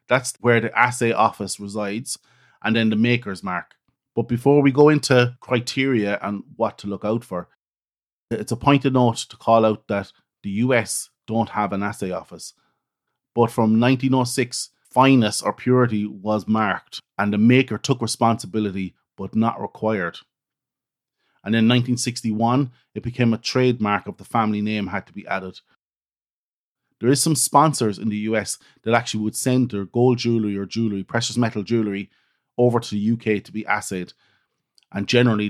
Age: 30-49